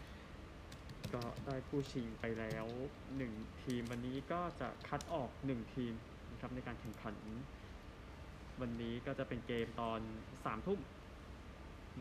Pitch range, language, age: 105-130 Hz, Thai, 20-39